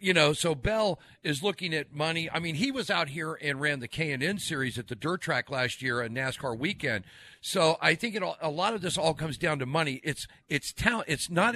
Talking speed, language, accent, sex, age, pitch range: 245 wpm, English, American, male, 40-59, 135-185 Hz